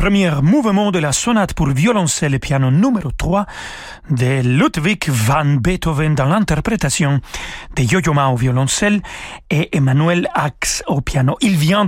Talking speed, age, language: 145 wpm, 40-59, French